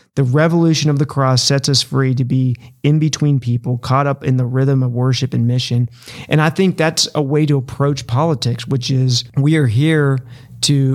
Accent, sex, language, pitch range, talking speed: American, male, English, 125-140 Hz, 205 wpm